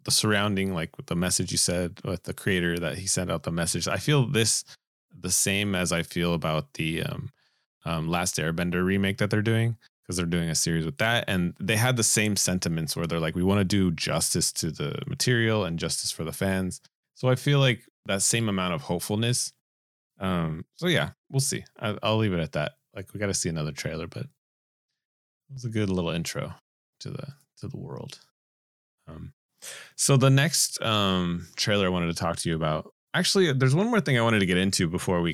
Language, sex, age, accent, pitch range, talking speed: English, male, 30-49, American, 85-115 Hz, 215 wpm